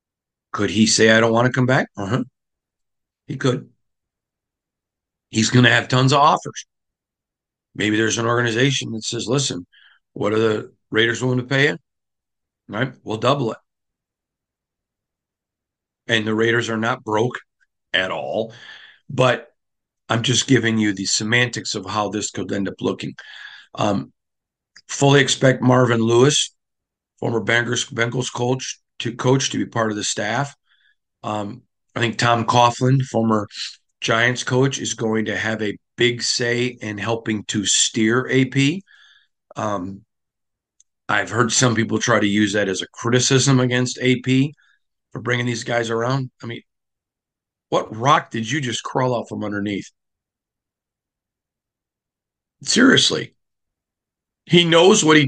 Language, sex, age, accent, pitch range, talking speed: English, male, 50-69, American, 110-125 Hz, 140 wpm